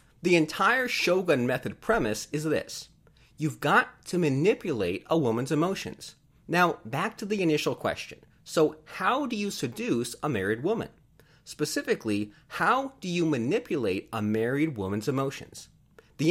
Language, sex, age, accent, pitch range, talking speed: English, male, 30-49, American, 115-170 Hz, 140 wpm